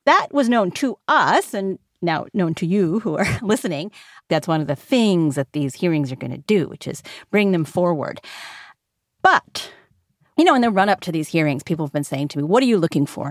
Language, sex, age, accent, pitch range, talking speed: English, female, 40-59, American, 170-240 Hz, 230 wpm